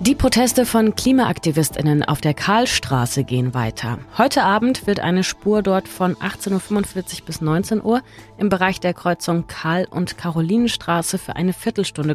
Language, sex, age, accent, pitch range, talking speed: German, female, 30-49, German, 145-210 Hz, 155 wpm